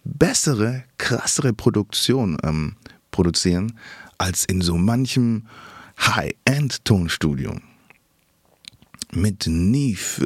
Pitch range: 90-110 Hz